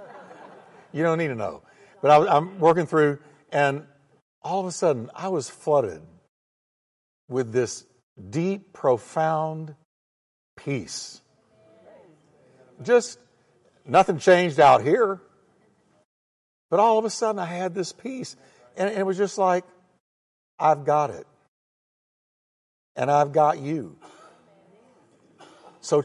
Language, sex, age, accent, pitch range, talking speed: English, male, 60-79, American, 150-200 Hz, 115 wpm